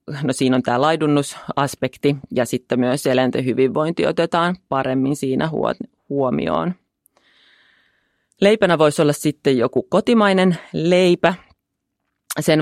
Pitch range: 130-155 Hz